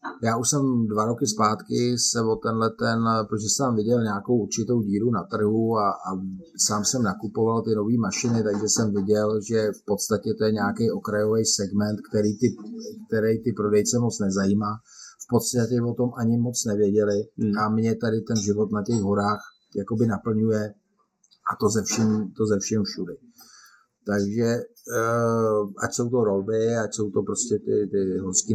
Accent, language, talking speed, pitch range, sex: native, Czech, 160 wpm, 100-115 Hz, male